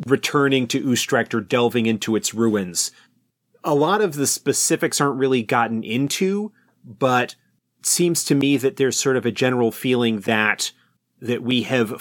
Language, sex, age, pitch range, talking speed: English, male, 30-49, 110-130 Hz, 165 wpm